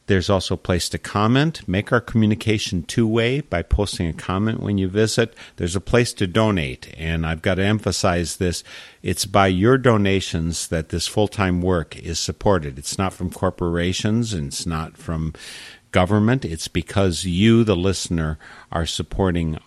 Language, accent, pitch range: English, American, 85-105 Hz